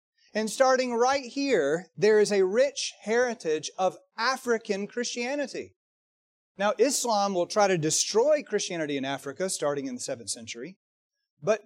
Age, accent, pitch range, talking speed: 30-49, American, 160-260 Hz, 140 wpm